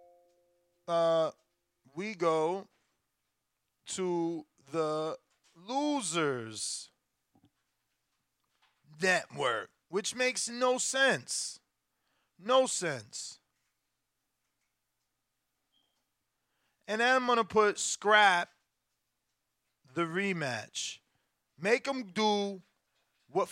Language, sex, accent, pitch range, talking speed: English, male, American, 175-230 Hz, 65 wpm